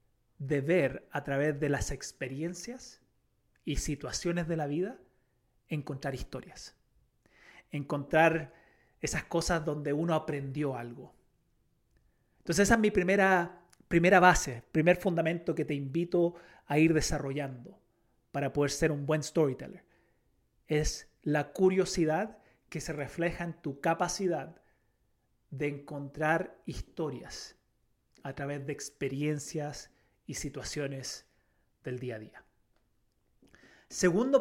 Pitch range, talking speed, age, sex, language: 145-185 Hz, 115 wpm, 40-59, male, Spanish